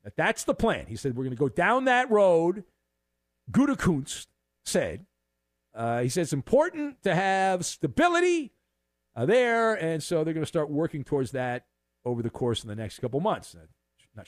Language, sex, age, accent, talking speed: English, male, 50-69, American, 180 wpm